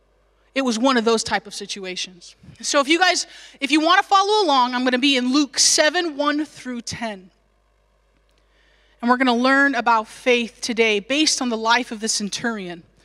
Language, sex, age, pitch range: English, female, 20-39, 235-370 Hz